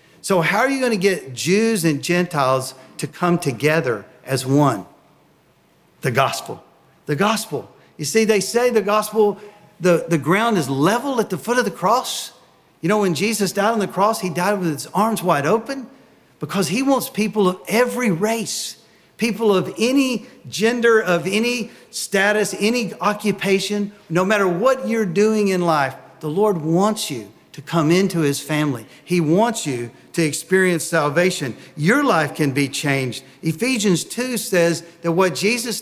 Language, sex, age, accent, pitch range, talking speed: English, male, 50-69, American, 160-215 Hz, 170 wpm